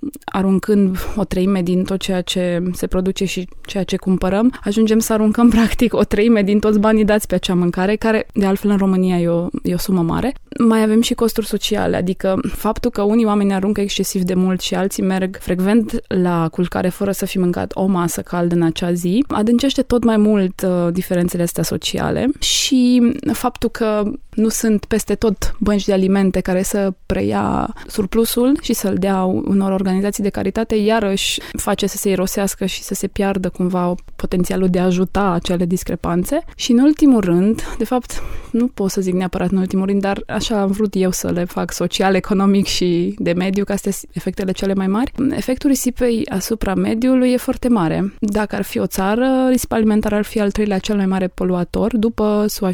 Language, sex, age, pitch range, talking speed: Romanian, female, 20-39, 185-225 Hz, 195 wpm